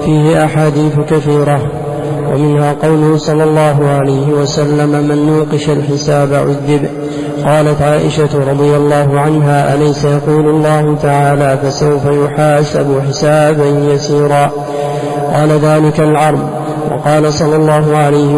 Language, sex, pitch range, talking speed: Arabic, male, 145-155 Hz, 110 wpm